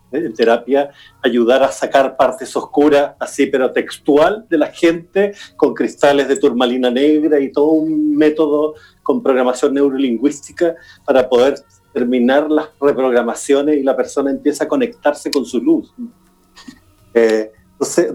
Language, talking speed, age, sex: Spanish, 135 wpm, 40-59, male